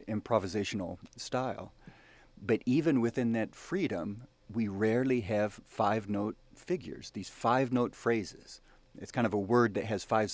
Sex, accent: male, American